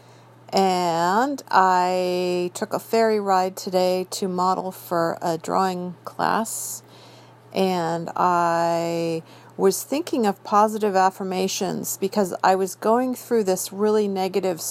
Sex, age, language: female, 50-69, English